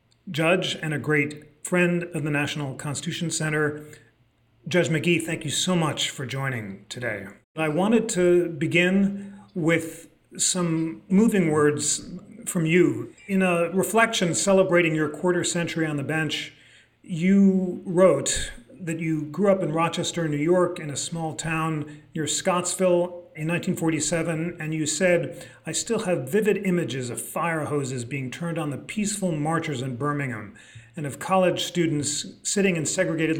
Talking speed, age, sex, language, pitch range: 150 wpm, 40-59, male, English, 145-175 Hz